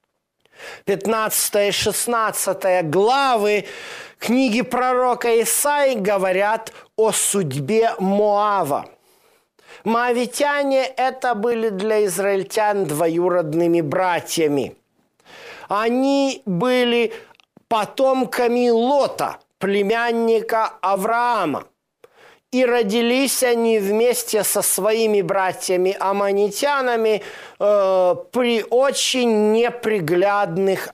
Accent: native